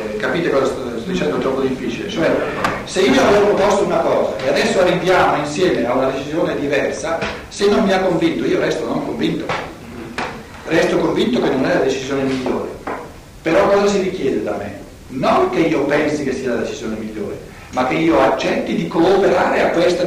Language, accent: Italian, native